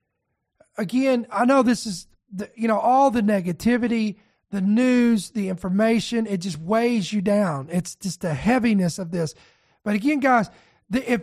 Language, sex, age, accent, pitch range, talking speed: English, male, 40-59, American, 215-270 Hz, 155 wpm